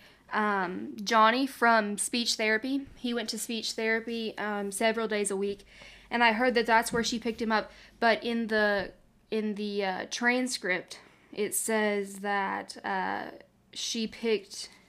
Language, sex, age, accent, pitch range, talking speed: English, female, 20-39, American, 200-225 Hz, 155 wpm